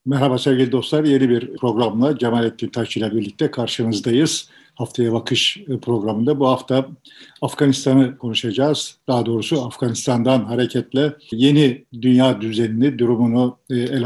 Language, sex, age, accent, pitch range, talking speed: Turkish, male, 50-69, native, 125-140 Hz, 110 wpm